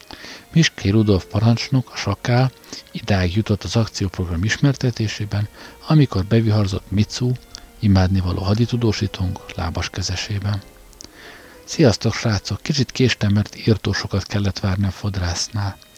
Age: 50-69